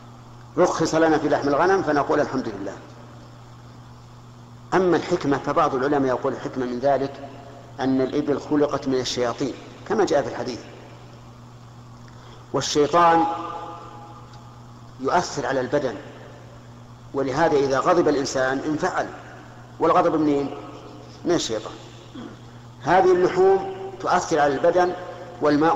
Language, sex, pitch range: Arabic, male, 120-155 Hz